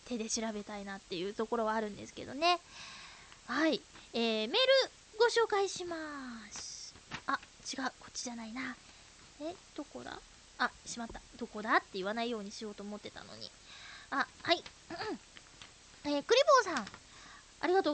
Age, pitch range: 20-39, 260-410 Hz